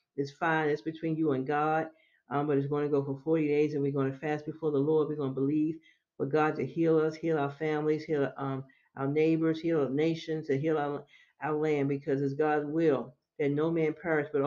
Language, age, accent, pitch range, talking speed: English, 50-69, American, 140-155 Hz, 235 wpm